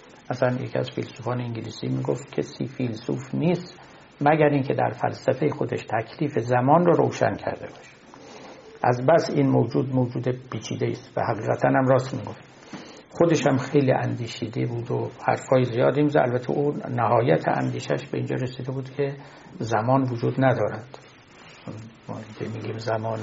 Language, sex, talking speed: Persian, male, 145 wpm